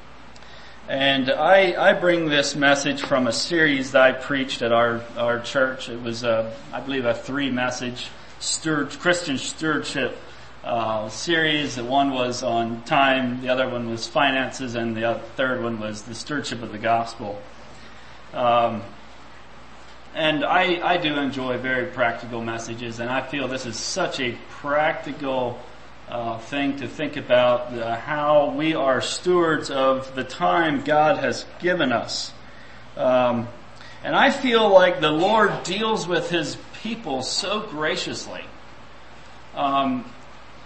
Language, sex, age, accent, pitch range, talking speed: English, male, 30-49, American, 120-170 Hz, 140 wpm